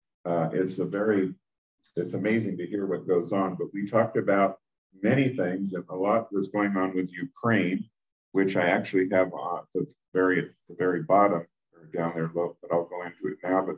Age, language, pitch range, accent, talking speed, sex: 50-69, English, 90-105 Hz, American, 190 wpm, male